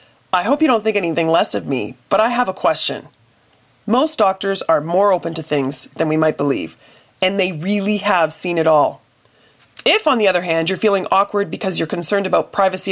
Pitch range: 165-225 Hz